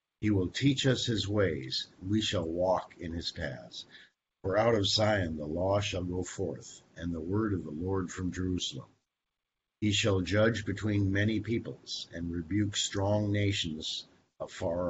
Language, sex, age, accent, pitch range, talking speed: English, male, 50-69, American, 90-110 Hz, 165 wpm